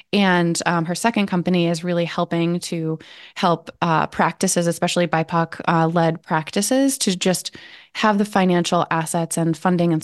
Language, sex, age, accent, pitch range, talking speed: English, female, 20-39, American, 170-205 Hz, 150 wpm